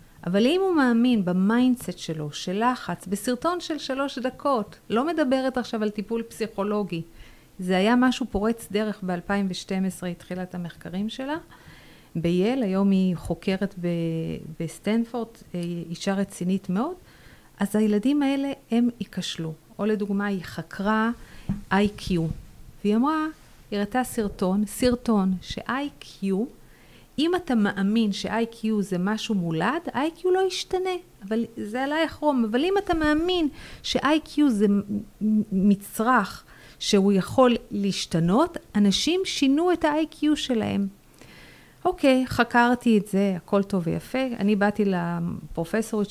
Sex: female